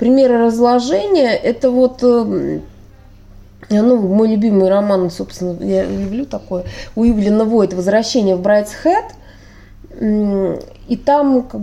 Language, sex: Russian, female